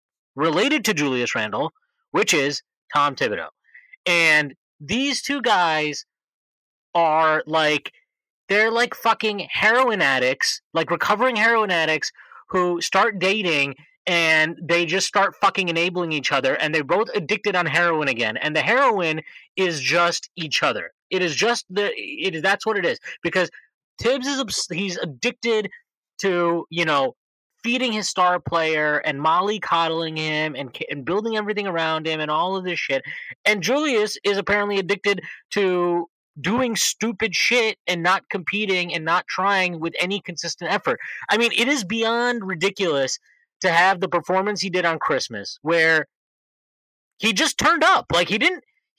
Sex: male